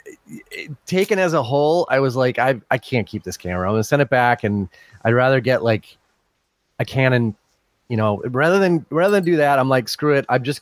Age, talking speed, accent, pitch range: 30-49, 225 wpm, American, 105-135 Hz